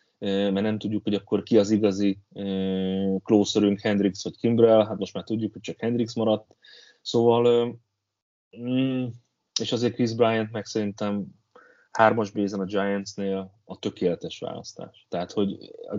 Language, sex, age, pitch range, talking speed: Hungarian, male, 20-39, 95-110 Hz, 140 wpm